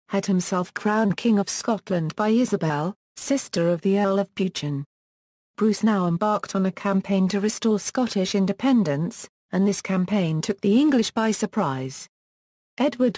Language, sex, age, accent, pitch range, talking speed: English, female, 40-59, British, 185-225 Hz, 150 wpm